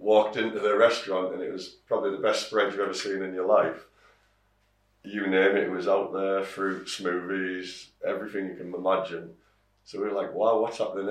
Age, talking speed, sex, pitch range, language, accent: 30-49, 200 wpm, male, 95-105 Hz, English, British